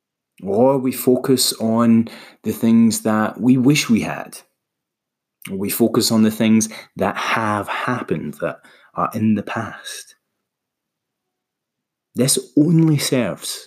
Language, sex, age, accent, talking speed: English, male, 30-49, British, 120 wpm